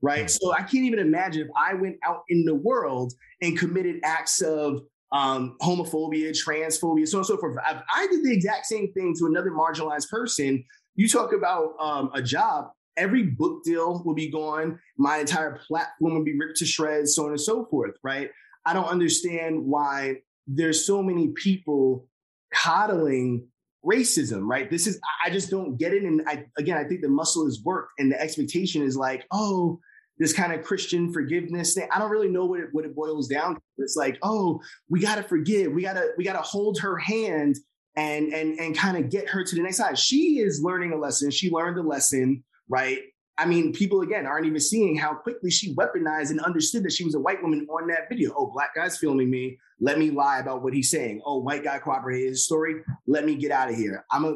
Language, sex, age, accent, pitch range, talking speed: English, male, 20-39, American, 145-190 Hz, 215 wpm